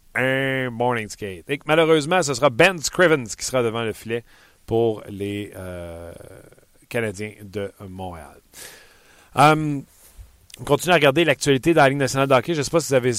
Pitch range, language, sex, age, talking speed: 105-140 Hz, French, male, 40-59, 180 wpm